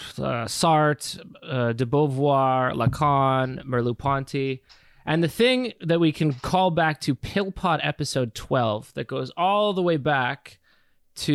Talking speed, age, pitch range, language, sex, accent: 135 wpm, 20-39, 120-150 Hz, English, male, American